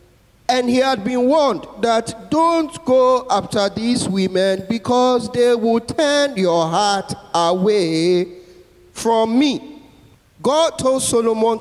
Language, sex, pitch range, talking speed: English, male, 215-265 Hz, 120 wpm